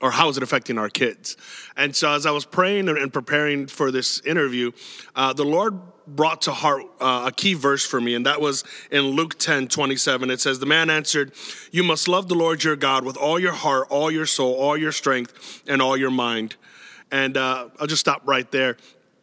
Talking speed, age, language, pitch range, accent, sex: 220 wpm, 30-49, English, 135-160 Hz, American, male